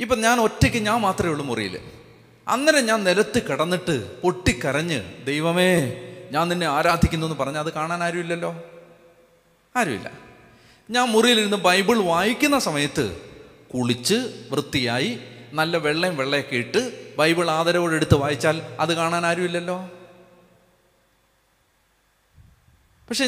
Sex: male